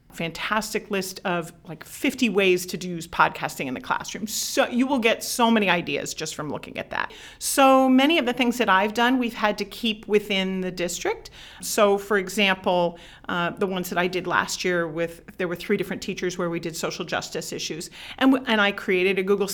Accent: American